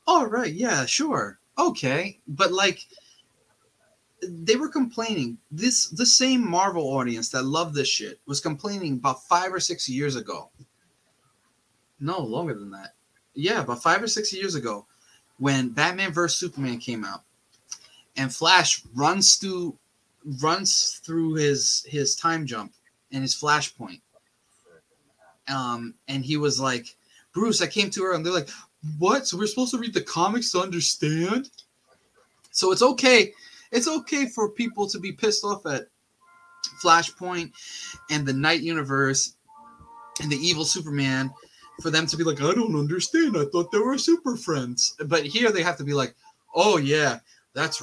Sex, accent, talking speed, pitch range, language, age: male, American, 160 wpm, 145-235 Hz, English, 20-39